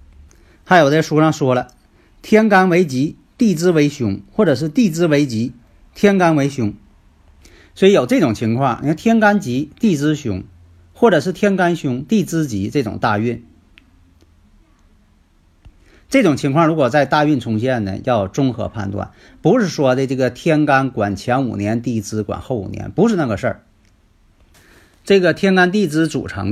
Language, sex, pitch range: Chinese, male, 100-155 Hz